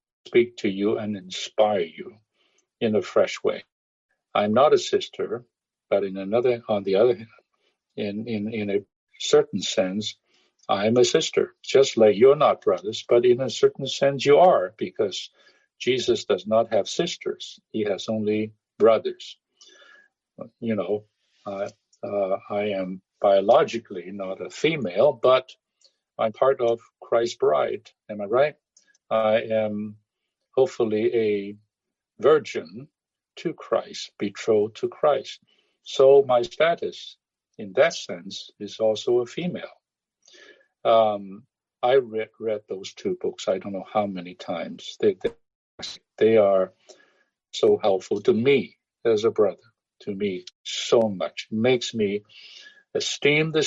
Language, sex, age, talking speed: English, male, 60-79, 140 wpm